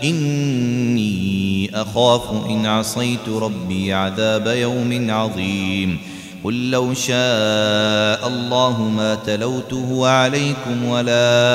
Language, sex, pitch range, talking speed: Arabic, male, 110-145 Hz, 85 wpm